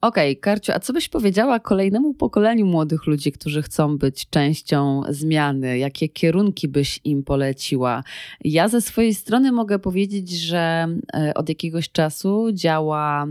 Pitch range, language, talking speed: 145-180 Hz, Polish, 145 wpm